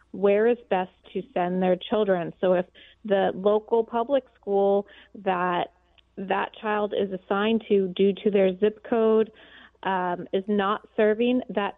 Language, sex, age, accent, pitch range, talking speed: English, female, 30-49, American, 195-225 Hz, 150 wpm